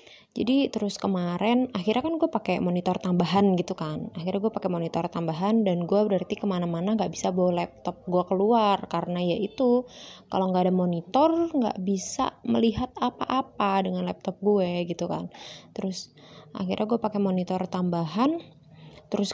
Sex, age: female, 20-39